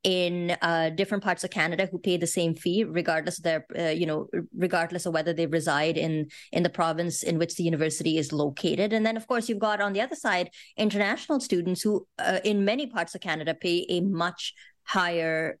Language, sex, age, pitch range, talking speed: English, female, 20-39, 170-215 Hz, 210 wpm